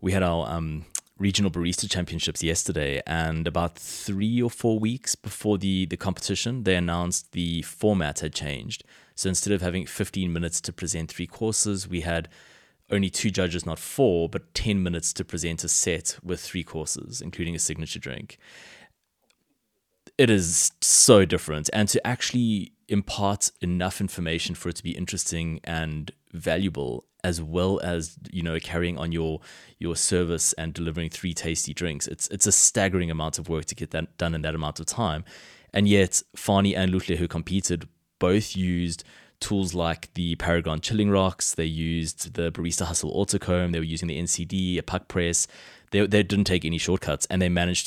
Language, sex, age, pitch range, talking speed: English, male, 20-39, 80-95 Hz, 175 wpm